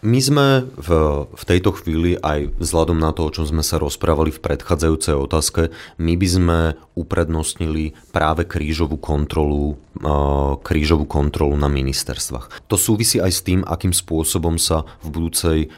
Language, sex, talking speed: Slovak, male, 145 wpm